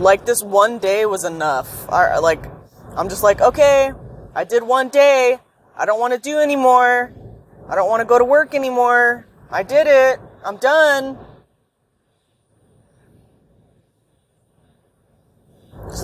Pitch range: 135-200 Hz